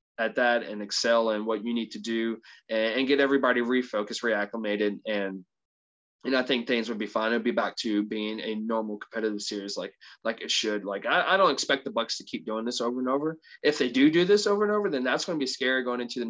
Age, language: 20-39, English